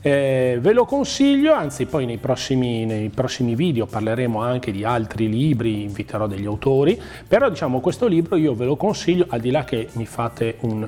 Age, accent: 40-59, native